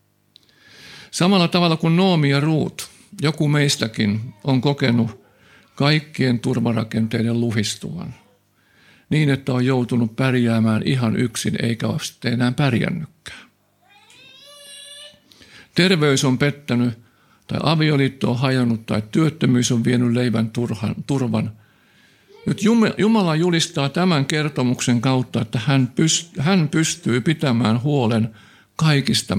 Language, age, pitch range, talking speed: Finnish, 50-69, 115-155 Hz, 100 wpm